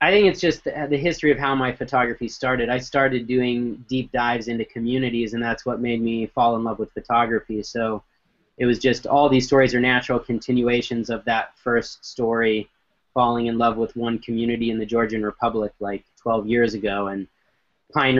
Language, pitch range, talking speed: English, 115-130 Hz, 195 wpm